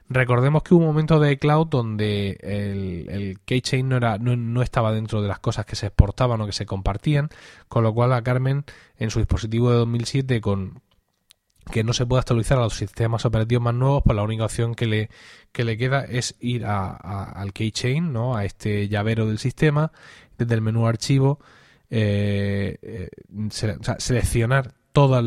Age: 20-39